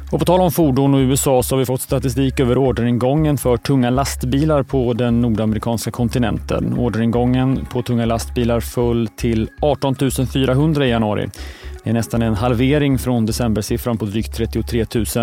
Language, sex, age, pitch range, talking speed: Swedish, male, 30-49, 110-135 Hz, 160 wpm